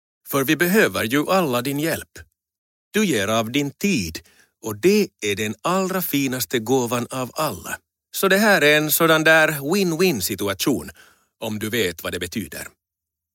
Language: Finnish